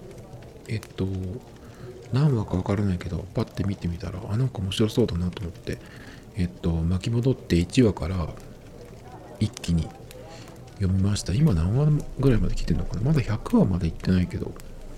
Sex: male